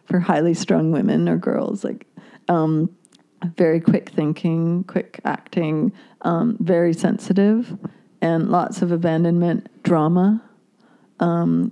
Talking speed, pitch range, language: 115 wpm, 165-205 Hz, English